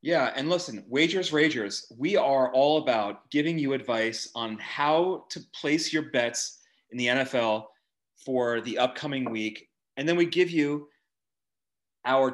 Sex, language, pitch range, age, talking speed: male, English, 130-165 Hz, 30-49, 150 wpm